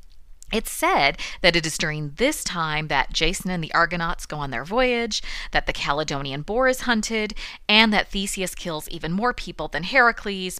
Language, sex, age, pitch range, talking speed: English, female, 30-49, 150-210 Hz, 180 wpm